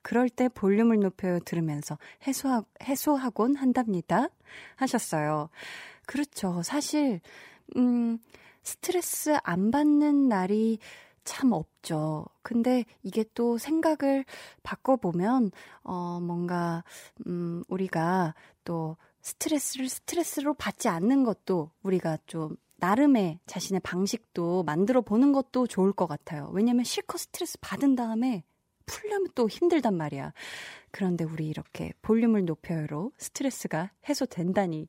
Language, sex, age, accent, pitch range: Korean, female, 20-39, native, 175-255 Hz